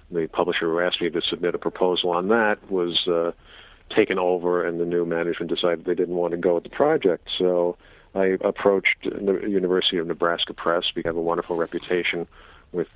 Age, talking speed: 50-69, 195 wpm